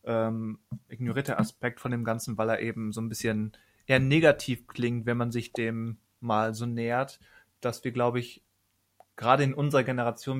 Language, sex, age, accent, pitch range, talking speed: German, male, 20-39, German, 110-130 Hz, 175 wpm